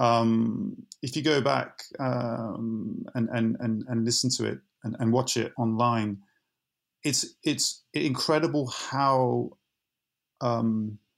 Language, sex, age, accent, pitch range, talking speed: English, male, 30-49, British, 110-125 Hz, 125 wpm